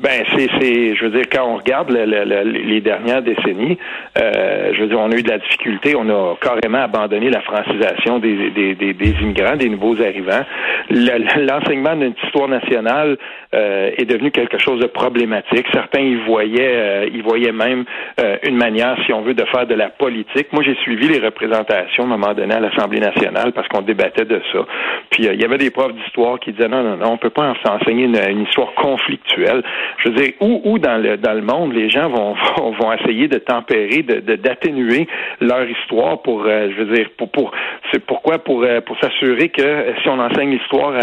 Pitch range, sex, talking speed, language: 110-140 Hz, male, 220 wpm, French